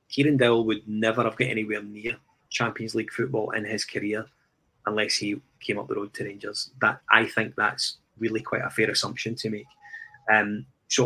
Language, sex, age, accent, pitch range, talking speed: English, male, 20-39, British, 110-130 Hz, 190 wpm